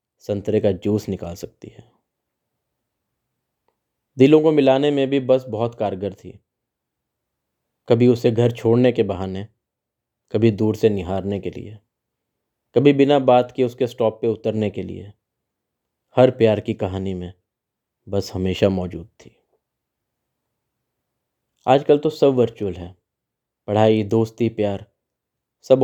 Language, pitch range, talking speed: Hindi, 100-120 Hz, 130 wpm